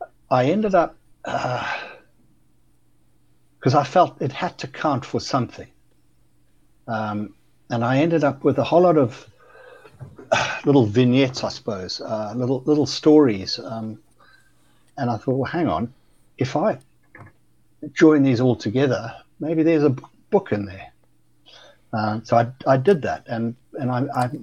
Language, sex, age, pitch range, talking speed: English, male, 60-79, 100-120 Hz, 150 wpm